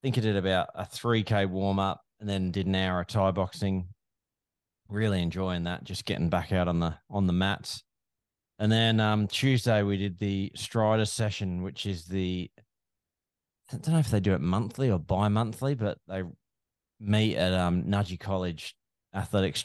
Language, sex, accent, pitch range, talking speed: English, male, Australian, 90-105 Hz, 185 wpm